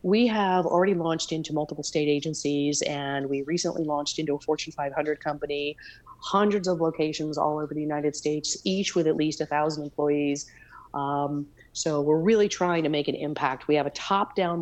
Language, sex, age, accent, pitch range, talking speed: English, female, 30-49, American, 145-165 Hz, 185 wpm